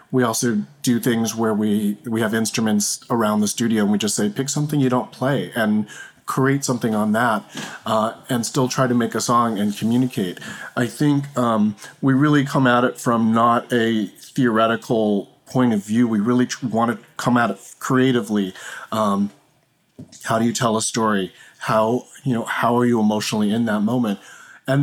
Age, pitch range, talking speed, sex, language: 40-59, 110-135 Hz, 190 wpm, male, English